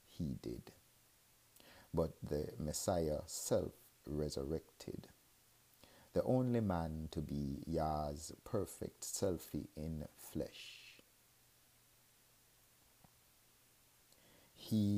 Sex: male